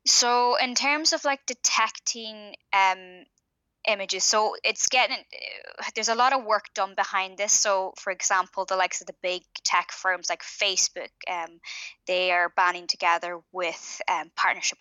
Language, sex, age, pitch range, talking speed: English, female, 10-29, 175-205 Hz, 160 wpm